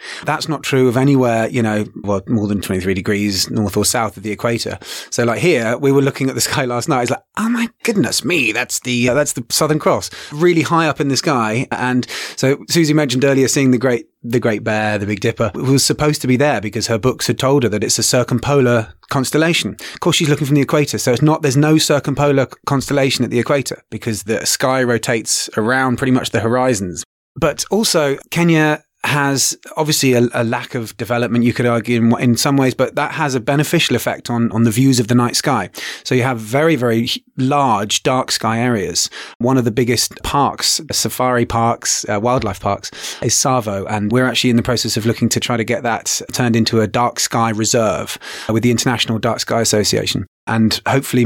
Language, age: English, 30-49